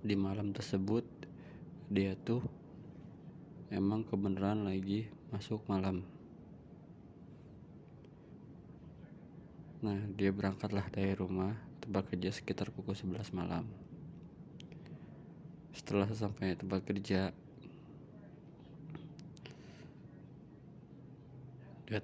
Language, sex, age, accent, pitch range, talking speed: Indonesian, male, 20-39, native, 95-110 Hz, 70 wpm